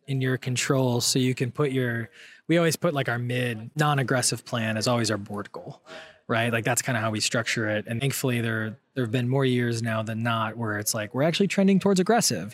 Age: 20-39